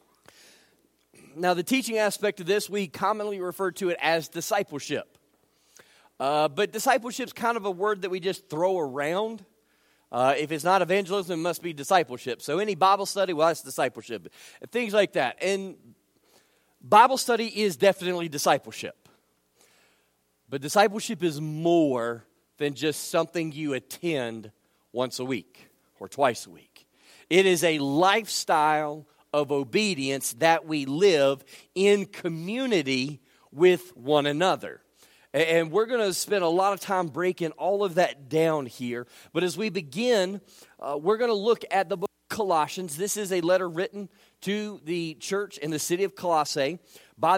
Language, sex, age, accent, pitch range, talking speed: English, male, 40-59, American, 150-200 Hz, 155 wpm